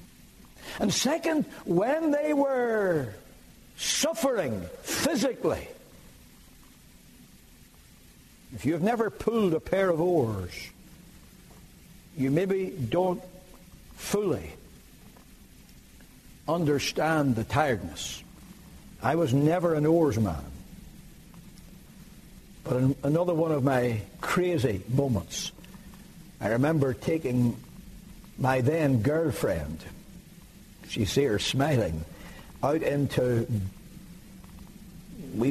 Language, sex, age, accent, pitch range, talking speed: English, male, 60-79, American, 120-180 Hz, 80 wpm